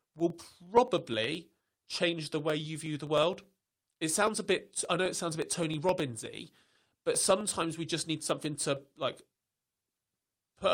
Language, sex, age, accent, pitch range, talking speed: English, male, 30-49, British, 135-165 Hz, 170 wpm